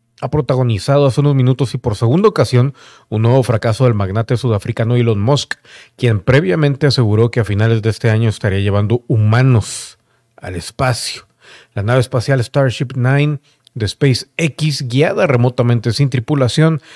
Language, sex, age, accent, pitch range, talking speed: Spanish, male, 40-59, Mexican, 115-145 Hz, 150 wpm